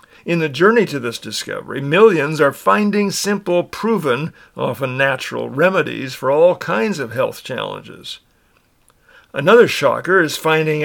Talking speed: 135 wpm